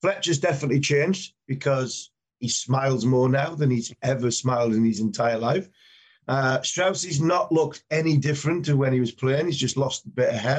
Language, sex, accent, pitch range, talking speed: English, male, British, 125-150 Hz, 200 wpm